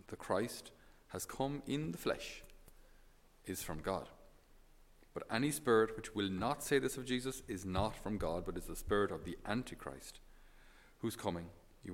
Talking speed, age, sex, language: 170 wpm, 30-49, male, English